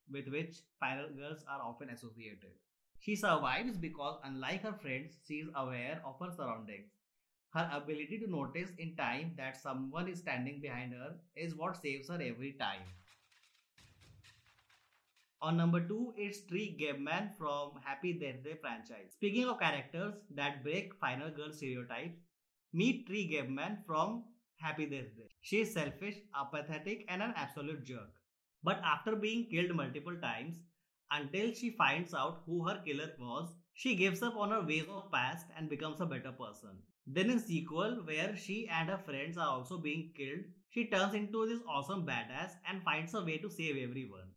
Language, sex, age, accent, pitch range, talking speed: English, male, 30-49, Indian, 135-190 Hz, 170 wpm